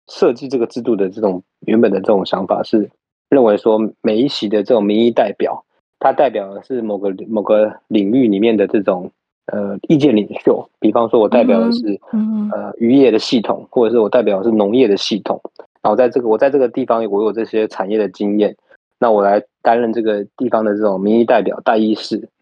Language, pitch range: Chinese, 105-135 Hz